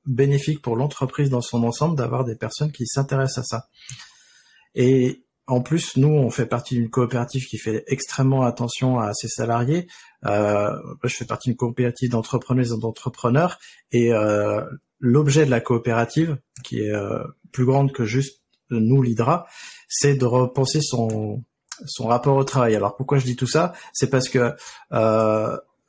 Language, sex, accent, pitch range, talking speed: French, male, French, 120-145 Hz, 165 wpm